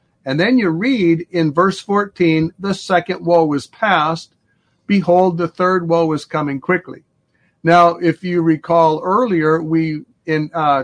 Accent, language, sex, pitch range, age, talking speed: American, English, male, 150-185 Hz, 50-69, 150 wpm